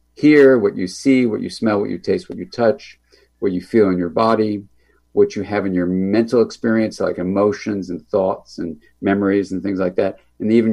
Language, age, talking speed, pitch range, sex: English, 50-69, 215 wpm, 90-125 Hz, male